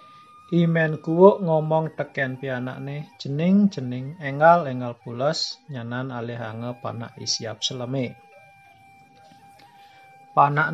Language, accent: Indonesian, native